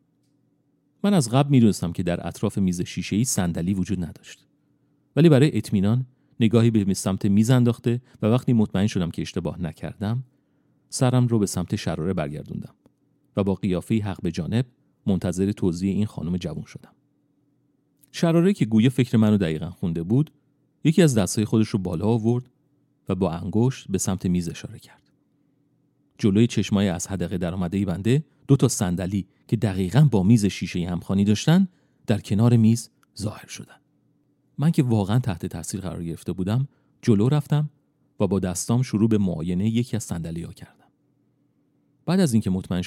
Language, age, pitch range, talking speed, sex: Persian, 40-59, 95-145 Hz, 160 wpm, male